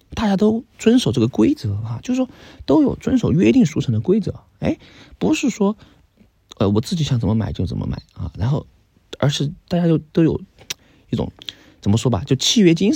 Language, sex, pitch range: Chinese, male, 100-160 Hz